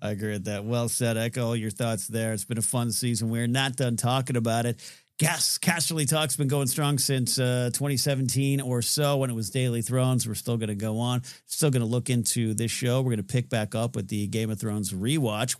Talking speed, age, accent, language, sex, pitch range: 240 wpm, 50-69, American, English, male, 115-145 Hz